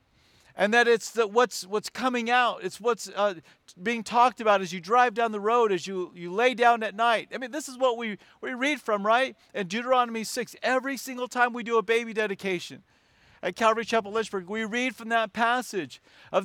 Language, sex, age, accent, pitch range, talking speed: English, male, 50-69, American, 190-235 Hz, 210 wpm